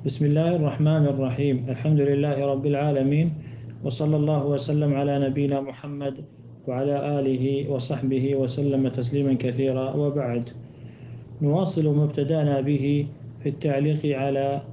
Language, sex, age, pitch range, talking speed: Arabic, male, 40-59, 125-145 Hz, 110 wpm